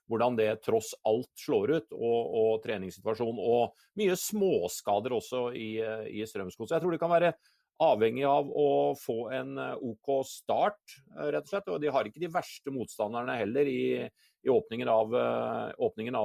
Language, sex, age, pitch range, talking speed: English, male, 40-59, 110-150 Hz, 155 wpm